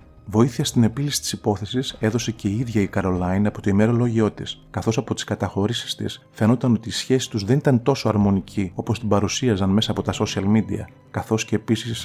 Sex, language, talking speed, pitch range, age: male, Greek, 200 wpm, 100-120 Hz, 30-49